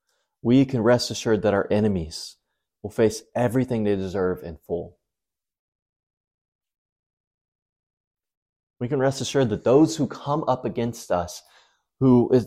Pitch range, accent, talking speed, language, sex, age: 105-130 Hz, American, 130 wpm, English, male, 30-49